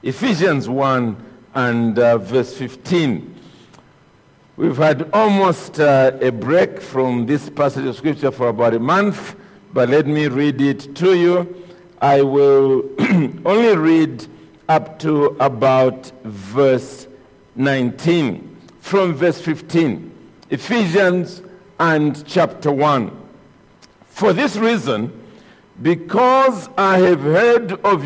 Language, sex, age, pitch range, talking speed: English, male, 50-69, 140-210 Hz, 110 wpm